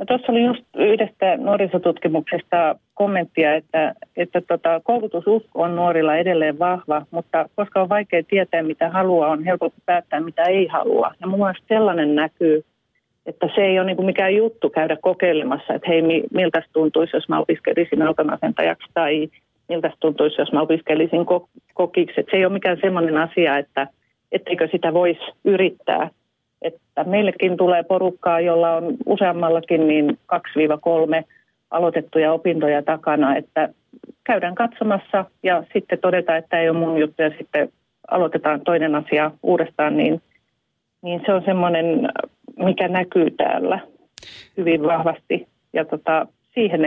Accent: native